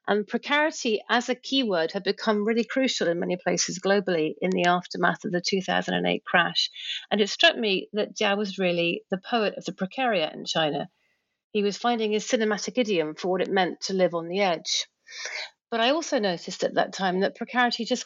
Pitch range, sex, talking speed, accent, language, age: 175-215 Hz, female, 200 wpm, British, English, 40-59